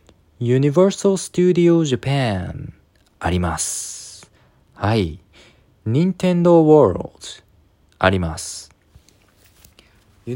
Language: Japanese